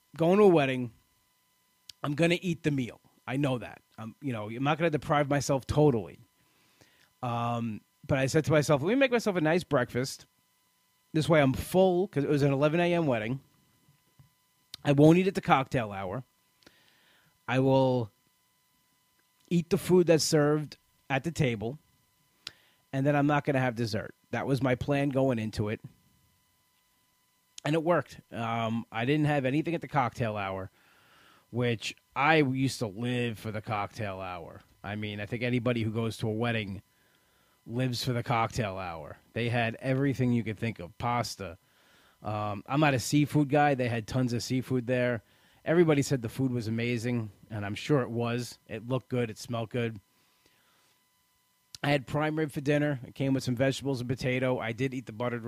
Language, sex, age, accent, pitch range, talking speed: English, male, 30-49, American, 115-145 Hz, 180 wpm